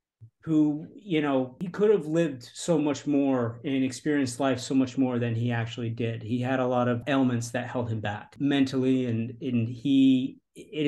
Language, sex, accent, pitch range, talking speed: English, male, American, 115-135 Hz, 195 wpm